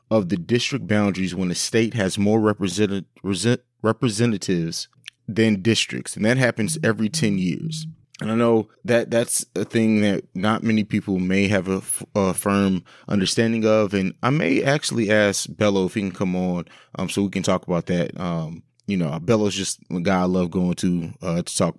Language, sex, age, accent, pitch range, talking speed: English, male, 20-39, American, 90-110 Hz, 185 wpm